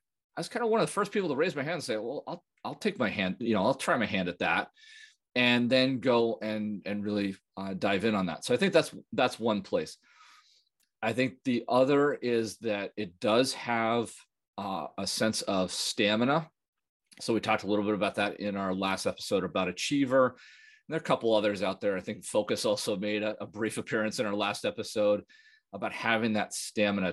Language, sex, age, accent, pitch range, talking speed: English, male, 30-49, American, 95-120 Hz, 220 wpm